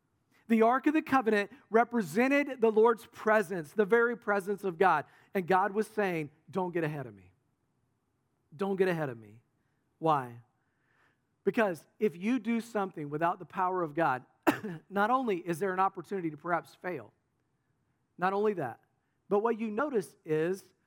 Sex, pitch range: male, 140-205 Hz